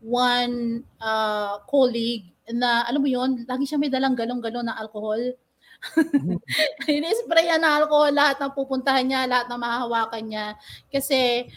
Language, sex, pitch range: Filipino, female, 225-270 Hz